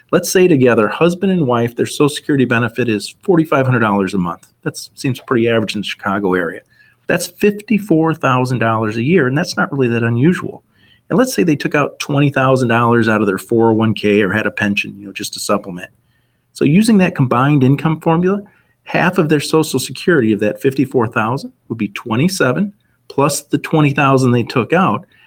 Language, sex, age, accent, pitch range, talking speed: English, male, 40-59, American, 115-155 Hz, 180 wpm